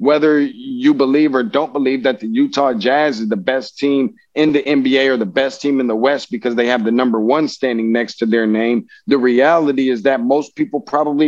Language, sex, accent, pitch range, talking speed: English, male, American, 130-160 Hz, 225 wpm